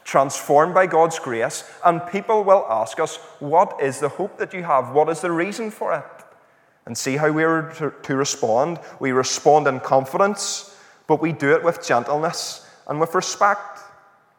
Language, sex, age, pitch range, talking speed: English, male, 30-49, 130-165 Hz, 175 wpm